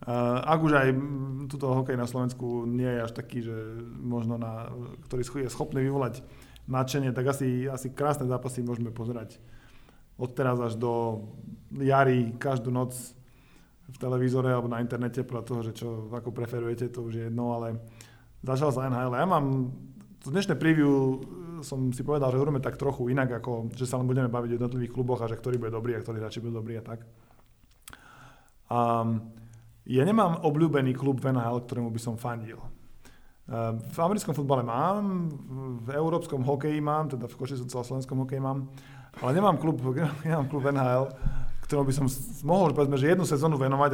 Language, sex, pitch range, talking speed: Slovak, male, 120-140 Hz, 175 wpm